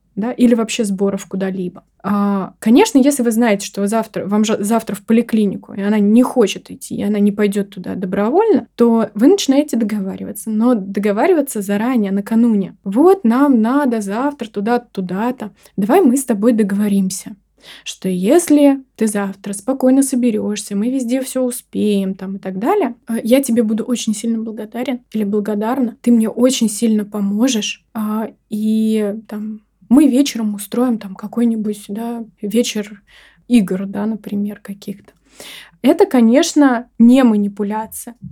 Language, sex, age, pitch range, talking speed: Russian, female, 20-39, 205-245 Hz, 140 wpm